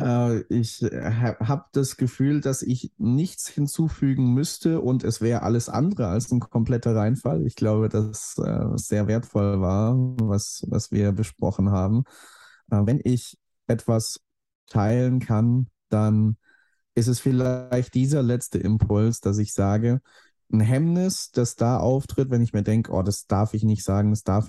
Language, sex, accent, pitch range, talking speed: German, male, German, 100-125 Hz, 150 wpm